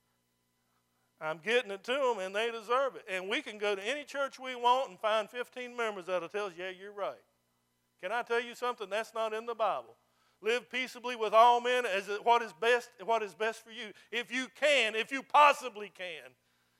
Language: English